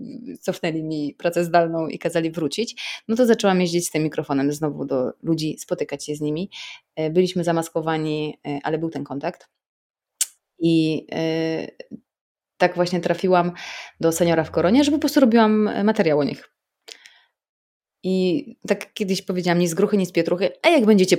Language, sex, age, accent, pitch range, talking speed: Polish, female, 20-39, native, 155-190 Hz, 150 wpm